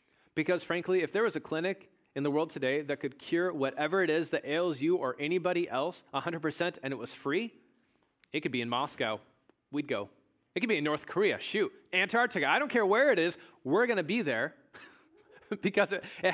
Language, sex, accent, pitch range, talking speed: English, male, American, 125-170 Hz, 210 wpm